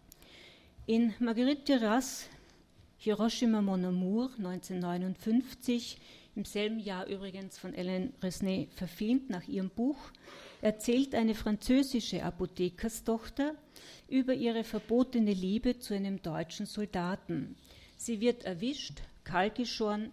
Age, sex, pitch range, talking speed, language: 40-59, female, 190-230 Hz, 100 wpm, German